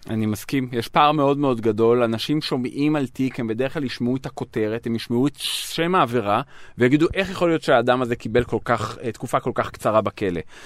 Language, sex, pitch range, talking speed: Hebrew, male, 120-165 Hz, 205 wpm